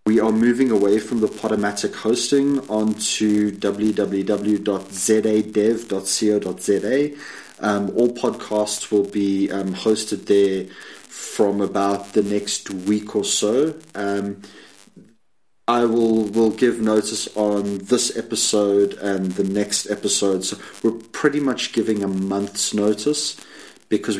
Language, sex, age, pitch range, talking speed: English, male, 30-49, 95-110 Hz, 115 wpm